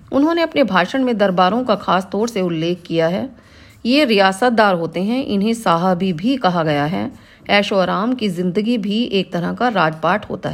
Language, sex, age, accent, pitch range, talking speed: Hindi, female, 40-59, native, 180-240 Hz, 175 wpm